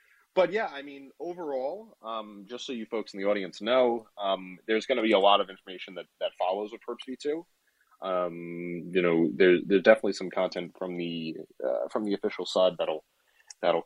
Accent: American